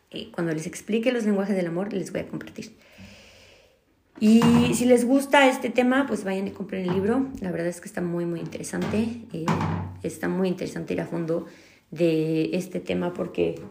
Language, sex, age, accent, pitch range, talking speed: Spanish, female, 30-49, Mexican, 175-205 Hz, 185 wpm